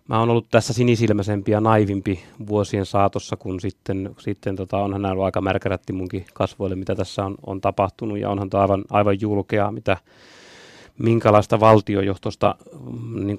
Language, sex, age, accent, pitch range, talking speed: Finnish, male, 30-49, native, 95-110 Hz, 150 wpm